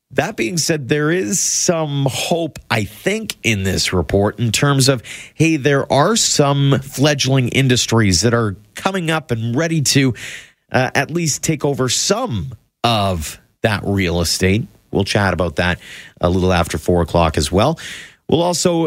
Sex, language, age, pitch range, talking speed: male, English, 30-49, 95-130 Hz, 160 wpm